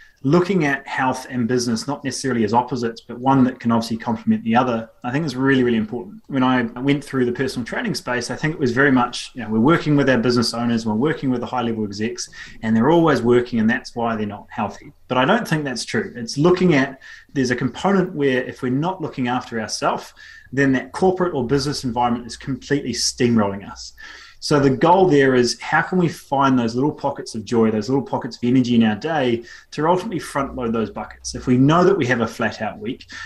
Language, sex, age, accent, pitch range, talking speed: English, male, 20-39, Australian, 115-140 Hz, 230 wpm